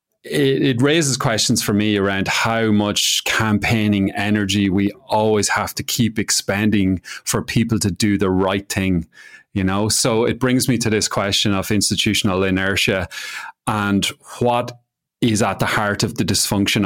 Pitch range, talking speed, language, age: 95-115 Hz, 155 wpm, English, 30-49